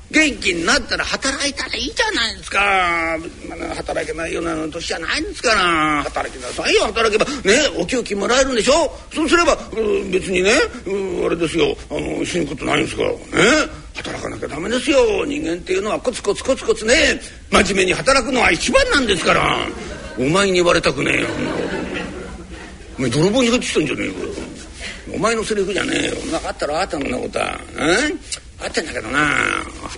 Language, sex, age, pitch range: Japanese, male, 50-69, 170-280 Hz